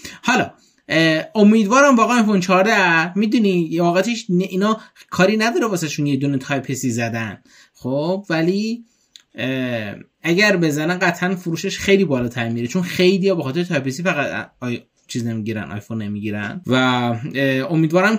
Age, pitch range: 20-39, 130-180 Hz